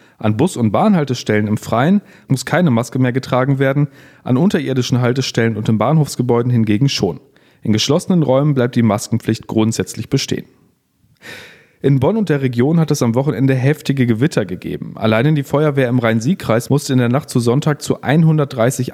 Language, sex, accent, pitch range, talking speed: German, male, German, 120-140 Hz, 170 wpm